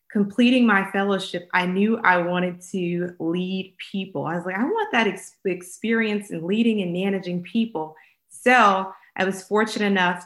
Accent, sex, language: American, female, English